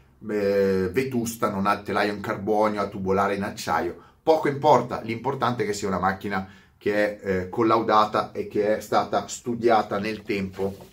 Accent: native